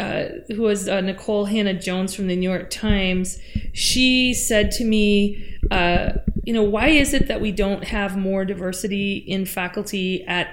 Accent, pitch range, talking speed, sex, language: American, 185-235 Hz, 175 wpm, female, English